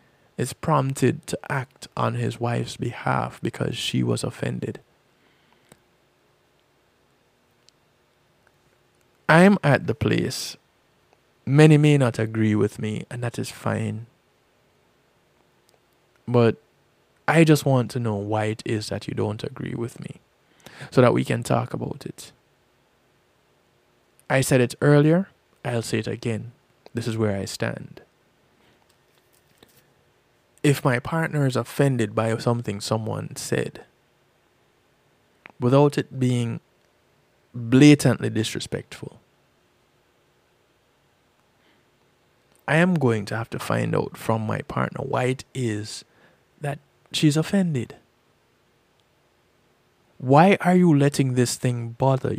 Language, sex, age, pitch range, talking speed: English, male, 20-39, 100-140 Hz, 115 wpm